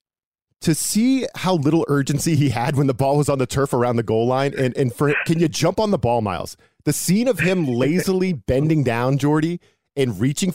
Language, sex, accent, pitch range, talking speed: English, male, American, 130-175 Hz, 210 wpm